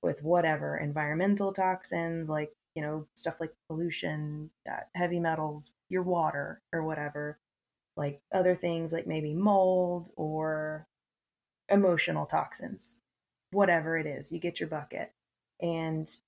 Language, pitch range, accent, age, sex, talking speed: English, 155-180 Hz, American, 20-39, female, 125 wpm